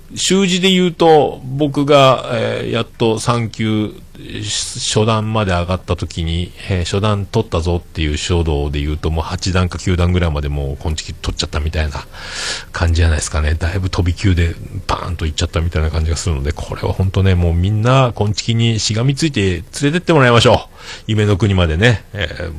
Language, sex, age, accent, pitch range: Japanese, male, 40-59, native, 85-110 Hz